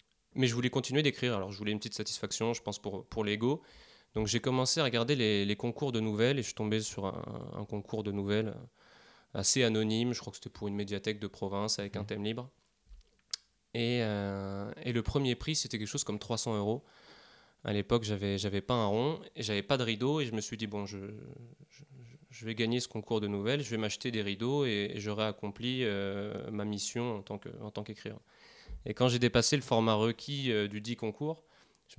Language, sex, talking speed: French, male, 220 wpm